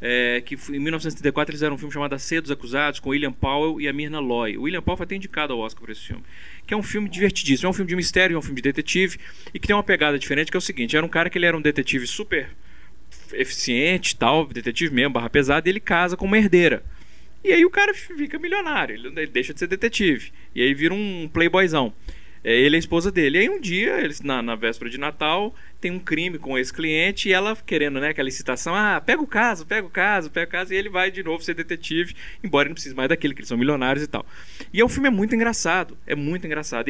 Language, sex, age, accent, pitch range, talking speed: Portuguese, male, 20-39, Brazilian, 140-190 Hz, 255 wpm